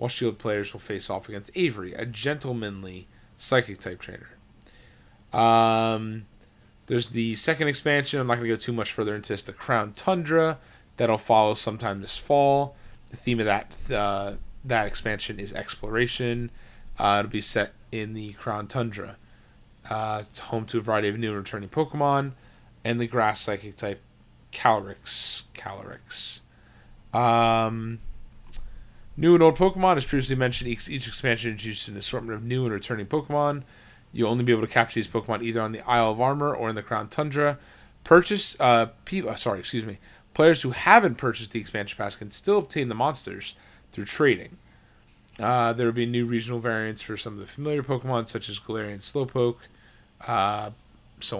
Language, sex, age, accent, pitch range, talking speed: English, male, 20-39, American, 105-125 Hz, 165 wpm